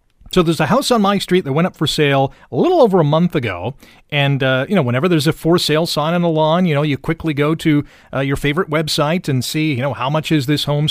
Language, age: English, 40-59